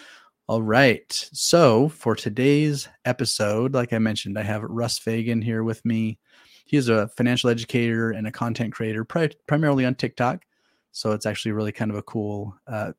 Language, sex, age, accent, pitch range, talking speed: English, male, 30-49, American, 105-120 Hz, 175 wpm